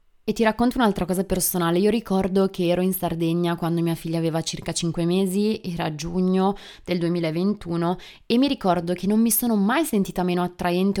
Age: 20-39